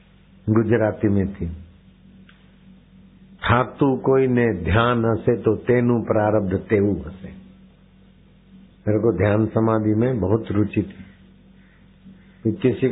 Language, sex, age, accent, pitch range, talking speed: Hindi, male, 60-79, native, 95-125 Hz, 100 wpm